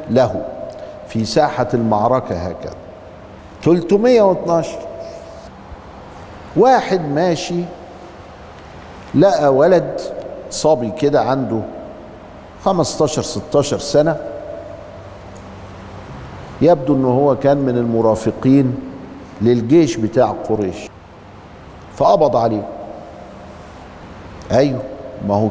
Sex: male